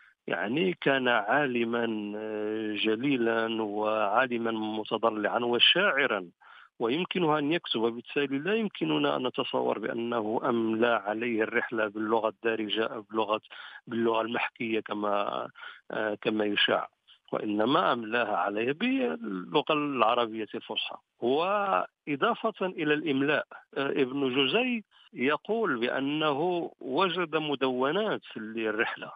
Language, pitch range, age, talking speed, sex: Arabic, 110-135 Hz, 50-69, 90 wpm, male